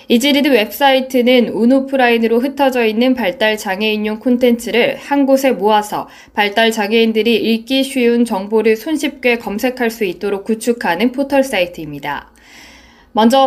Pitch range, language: 210-260 Hz, Korean